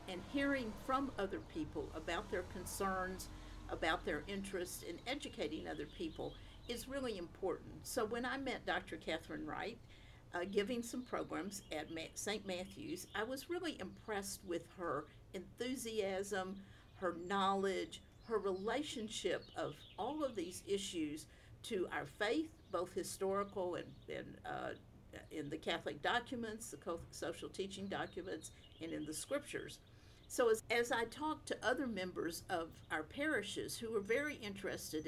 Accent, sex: American, female